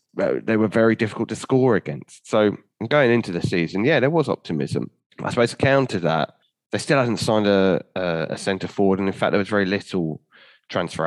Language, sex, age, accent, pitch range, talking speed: English, male, 20-39, British, 90-115 Hz, 200 wpm